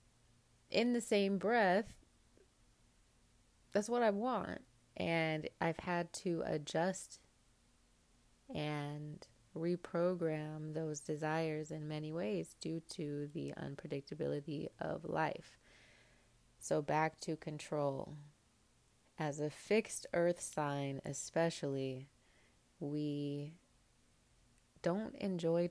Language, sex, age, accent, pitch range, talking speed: English, female, 20-39, American, 150-175 Hz, 90 wpm